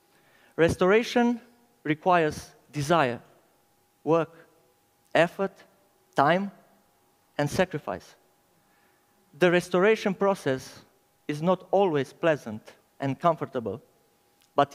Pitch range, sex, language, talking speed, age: 145-180 Hz, male, English, 75 wpm, 50-69